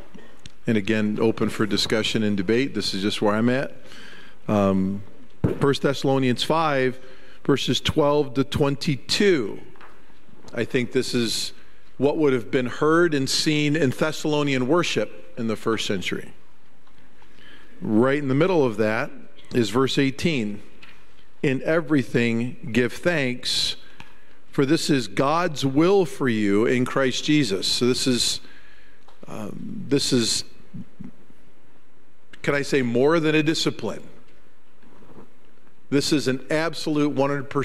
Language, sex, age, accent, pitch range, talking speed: English, male, 50-69, American, 120-150 Hz, 125 wpm